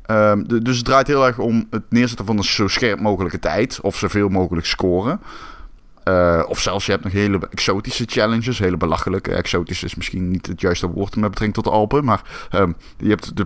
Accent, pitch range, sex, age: Dutch, 100-125 Hz, male, 20-39